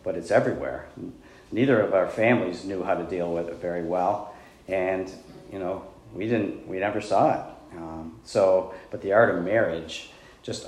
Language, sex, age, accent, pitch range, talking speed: English, male, 40-59, American, 95-120 Hz, 180 wpm